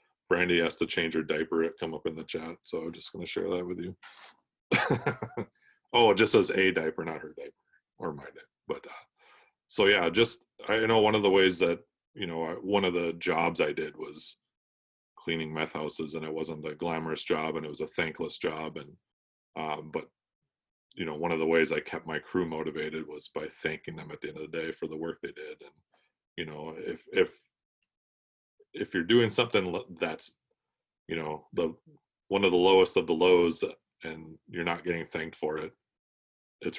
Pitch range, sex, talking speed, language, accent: 80-100 Hz, male, 210 wpm, English, American